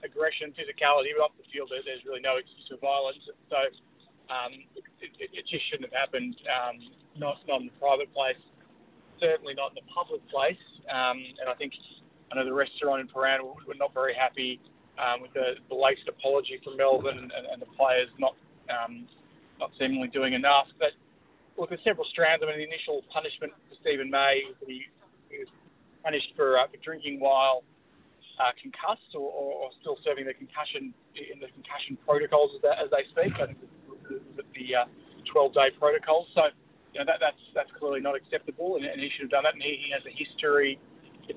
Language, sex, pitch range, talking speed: English, male, 135-165 Hz, 205 wpm